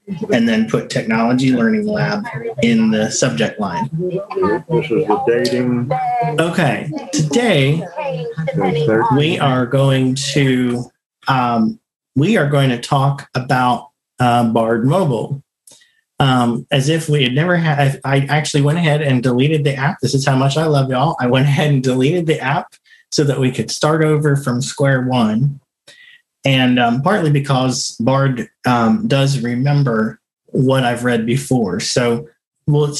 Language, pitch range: English, 120-145 Hz